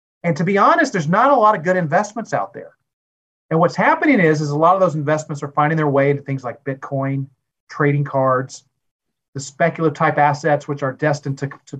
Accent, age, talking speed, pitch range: American, 40-59, 215 wpm, 135-175 Hz